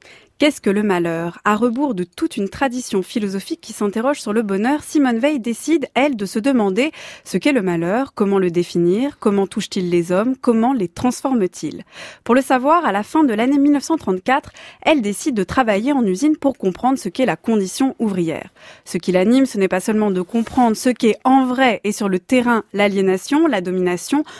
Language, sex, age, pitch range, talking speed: French, female, 20-39, 195-270 Hz, 195 wpm